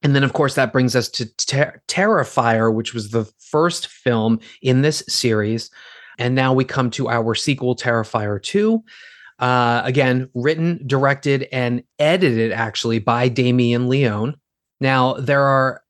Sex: male